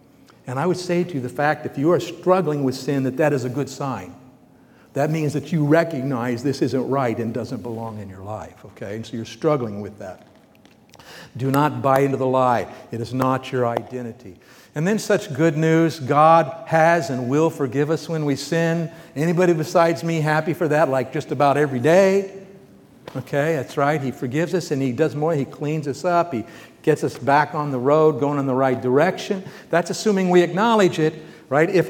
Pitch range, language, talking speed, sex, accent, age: 125-160 Hz, English, 205 wpm, male, American, 60-79